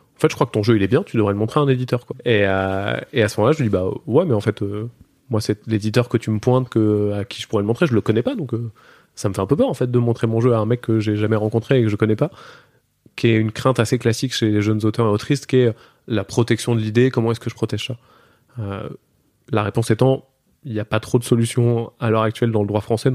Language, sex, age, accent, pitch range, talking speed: French, male, 20-39, French, 110-125 Hz, 310 wpm